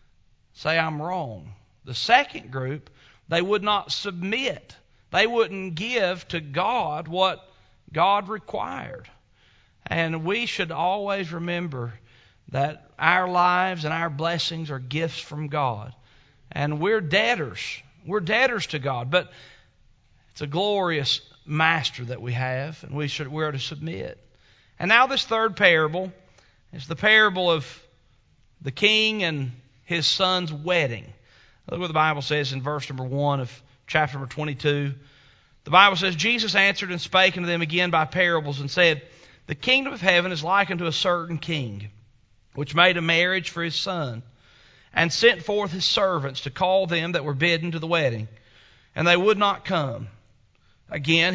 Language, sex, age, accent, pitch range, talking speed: English, male, 40-59, American, 135-185 Hz, 155 wpm